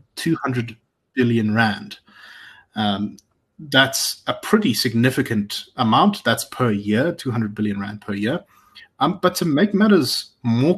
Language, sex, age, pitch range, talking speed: English, male, 30-49, 105-135 Hz, 130 wpm